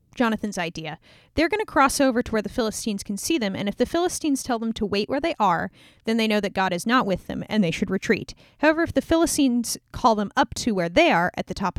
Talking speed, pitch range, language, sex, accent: 265 wpm, 190-275 Hz, English, female, American